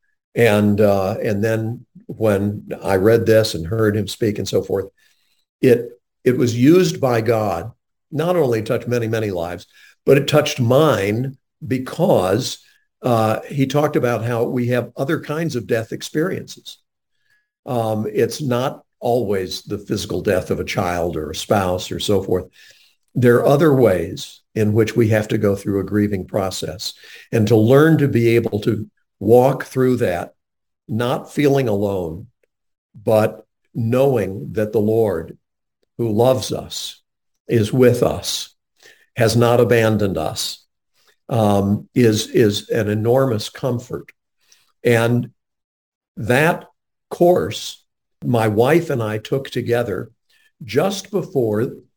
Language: English